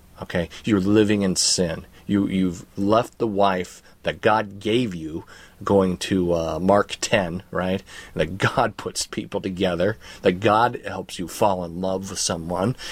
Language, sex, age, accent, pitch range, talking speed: English, male, 40-59, American, 90-115 Hz, 160 wpm